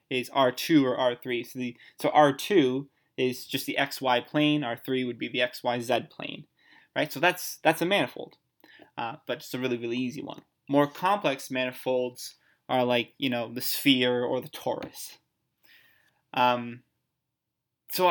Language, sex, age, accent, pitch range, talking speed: English, male, 20-39, American, 125-145 Hz, 155 wpm